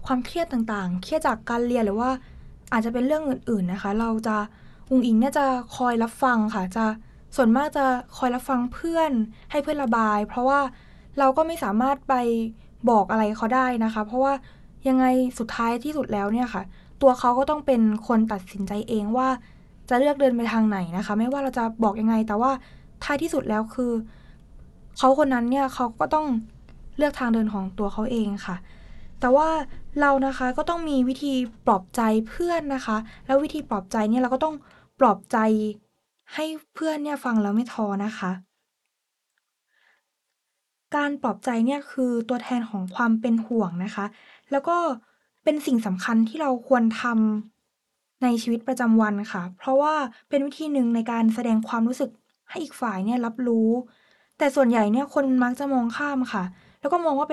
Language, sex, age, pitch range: English, female, 20-39, 220-275 Hz